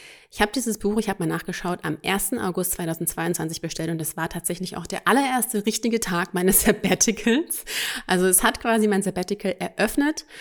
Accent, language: German, German